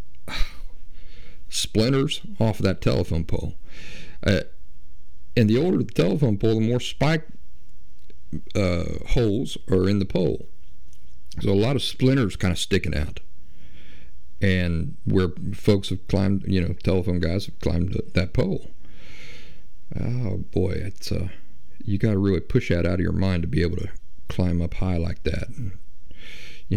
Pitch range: 80-100 Hz